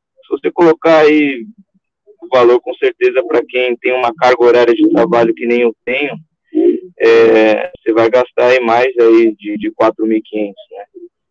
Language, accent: Portuguese, Brazilian